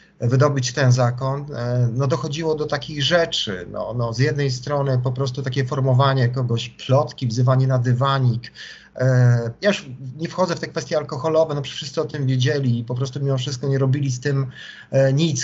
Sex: male